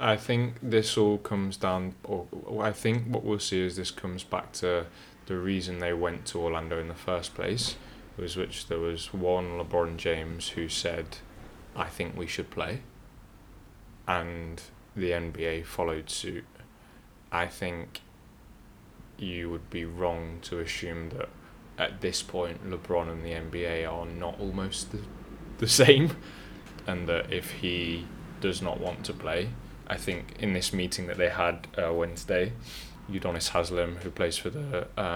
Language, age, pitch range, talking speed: English, 20-39, 85-105 Hz, 160 wpm